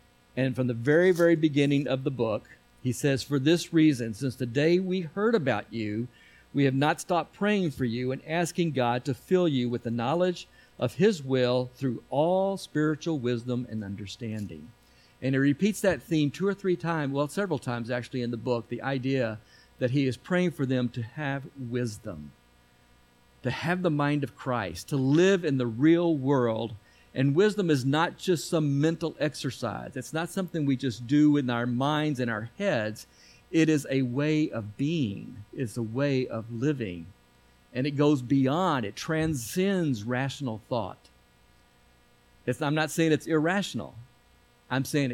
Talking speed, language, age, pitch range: 175 wpm, English, 50-69, 115-150 Hz